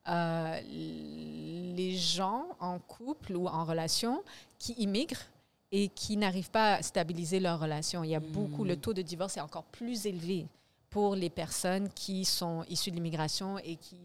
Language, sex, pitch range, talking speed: English, female, 170-225 Hz, 170 wpm